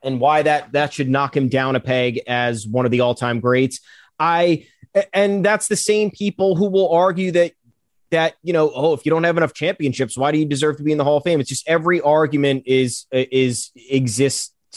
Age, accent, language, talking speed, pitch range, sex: 30-49, American, English, 225 wpm, 145-180 Hz, male